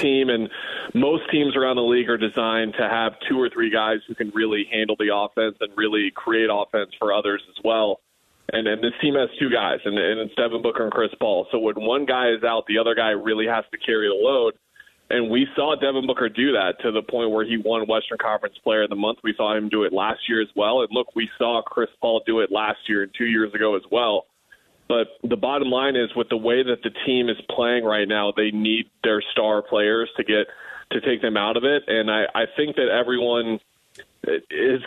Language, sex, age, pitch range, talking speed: English, male, 20-39, 110-125 Hz, 235 wpm